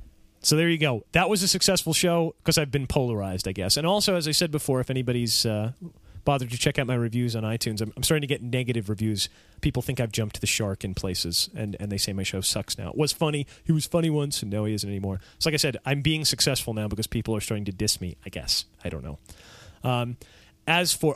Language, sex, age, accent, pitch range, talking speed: English, male, 30-49, American, 105-140 Hz, 250 wpm